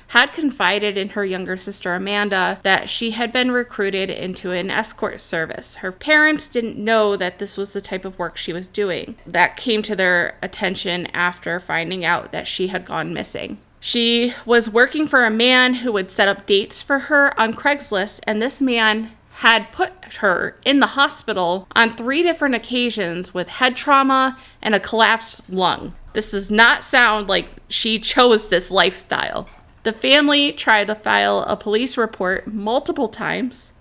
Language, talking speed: English, 170 wpm